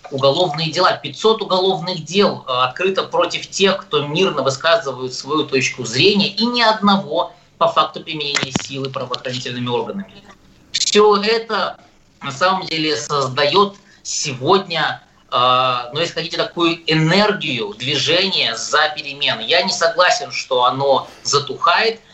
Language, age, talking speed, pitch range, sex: Russian, 20-39, 120 wpm, 140-190 Hz, male